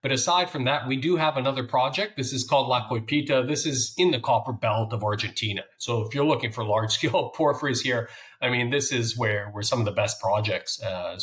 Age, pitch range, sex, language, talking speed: 40-59, 110-145 Hz, male, English, 230 wpm